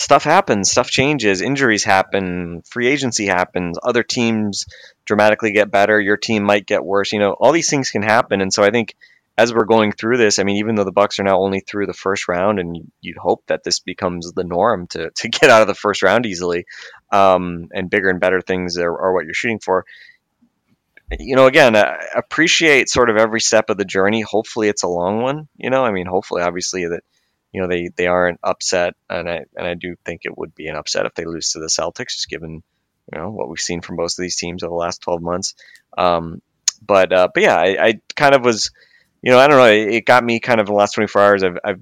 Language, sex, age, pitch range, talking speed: English, male, 20-39, 90-110 Hz, 240 wpm